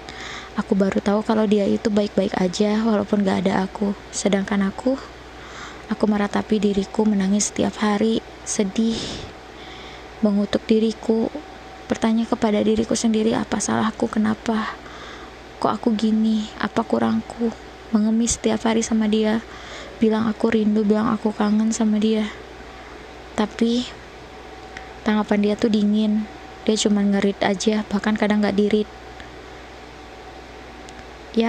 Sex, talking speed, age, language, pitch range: female, 120 wpm, 20-39, Indonesian, 215-240 Hz